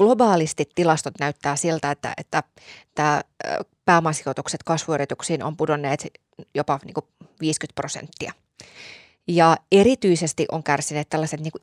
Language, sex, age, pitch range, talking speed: Finnish, female, 20-39, 150-185 Hz, 115 wpm